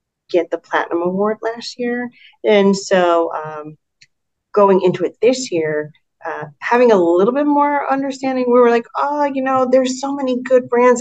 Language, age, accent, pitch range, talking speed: English, 40-59, American, 170-240 Hz, 175 wpm